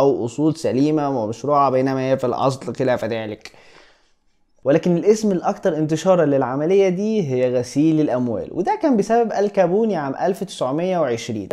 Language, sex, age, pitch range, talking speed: Arabic, male, 20-39, 135-210 Hz, 130 wpm